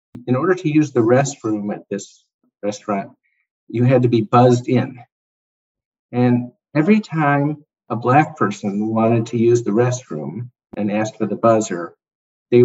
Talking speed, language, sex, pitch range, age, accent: 150 wpm, English, male, 110-145 Hz, 50-69, American